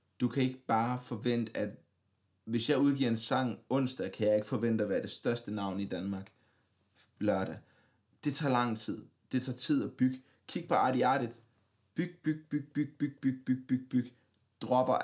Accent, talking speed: native, 185 wpm